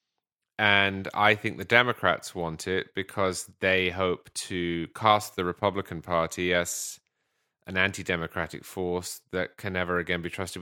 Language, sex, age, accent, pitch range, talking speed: English, male, 30-49, British, 95-135 Hz, 140 wpm